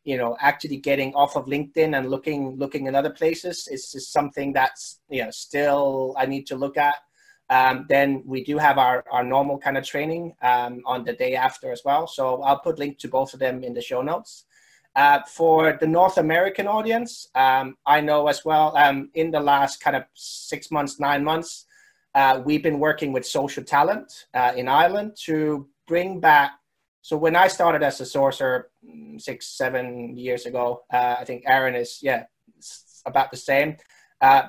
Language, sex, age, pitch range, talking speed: English, male, 30-49, 130-155 Hz, 190 wpm